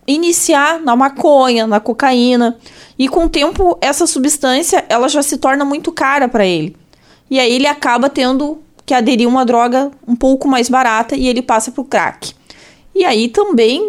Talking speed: 175 wpm